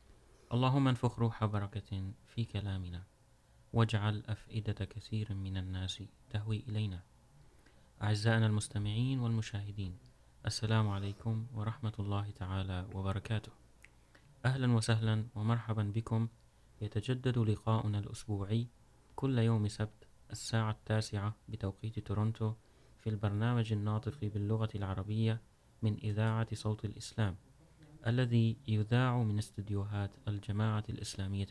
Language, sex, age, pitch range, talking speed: Urdu, male, 30-49, 105-115 Hz, 95 wpm